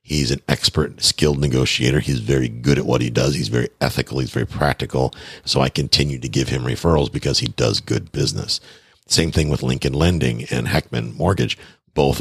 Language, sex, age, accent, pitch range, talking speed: English, male, 50-69, American, 65-75 Hz, 190 wpm